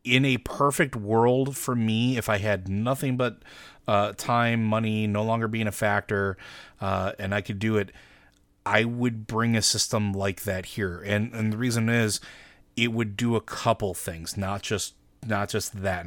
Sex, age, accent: male, 30-49, American